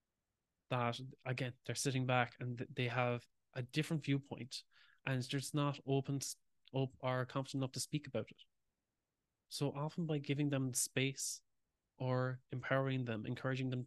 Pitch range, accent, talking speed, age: 120-140 Hz, Irish, 150 wpm, 20-39